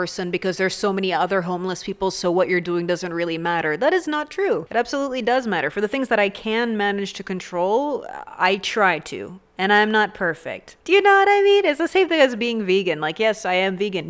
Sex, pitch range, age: female, 185-245 Hz, 30-49